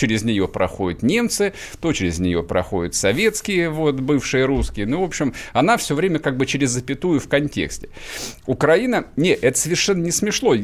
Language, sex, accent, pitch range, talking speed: Russian, male, native, 105-140 Hz, 170 wpm